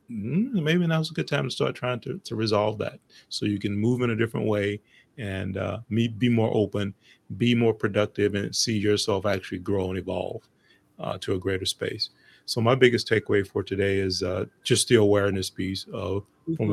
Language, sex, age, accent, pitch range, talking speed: English, male, 30-49, American, 100-125 Hz, 195 wpm